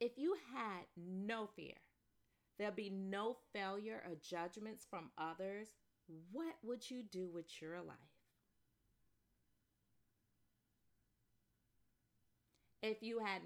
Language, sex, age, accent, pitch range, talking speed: English, female, 30-49, American, 165-225 Hz, 105 wpm